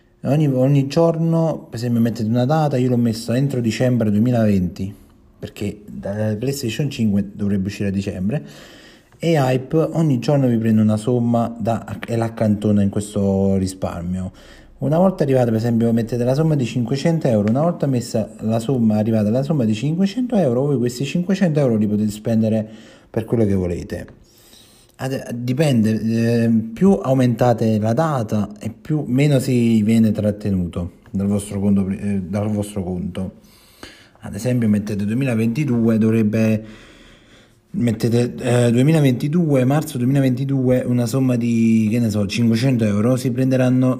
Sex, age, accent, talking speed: male, 30-49, native, 145 wpm